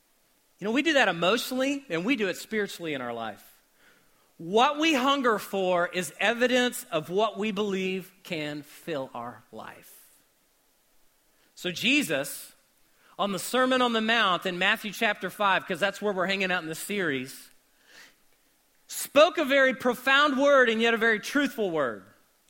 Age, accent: 40-59, American